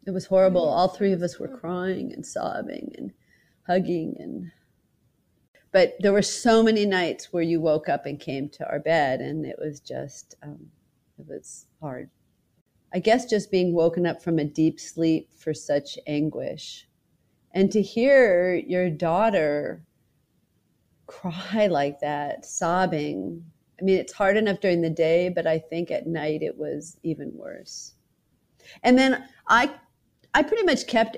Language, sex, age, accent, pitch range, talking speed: English, female, 40-59, American, 160-200 Hz, 160 wpm